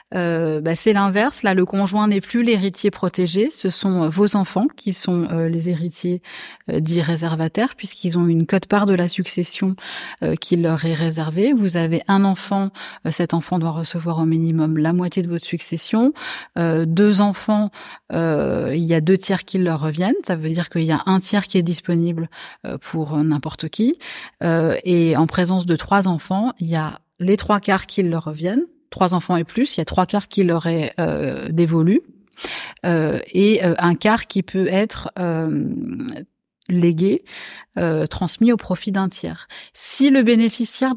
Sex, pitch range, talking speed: female, 170-205 Hz, 185 wpm